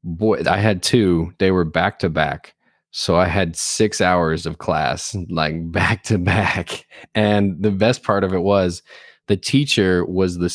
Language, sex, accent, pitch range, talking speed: English, male, American, 85-105 Hz, 175 wpm